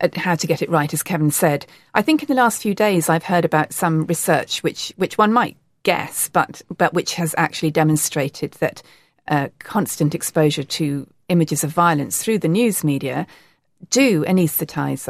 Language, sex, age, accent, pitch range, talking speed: English, female, 40-59, British, 155-185 Hz, 185 wpm